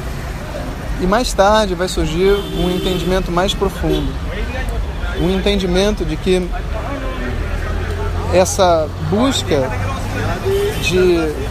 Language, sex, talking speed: Portuguese, male, 85 wpm